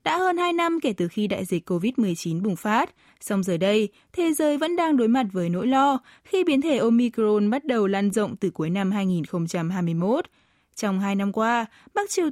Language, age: Vietnamese, 20-39